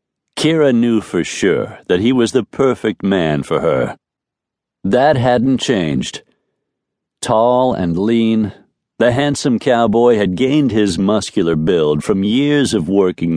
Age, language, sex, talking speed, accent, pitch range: 60-79, English, male, 135 wpm, American, 100-135 Hz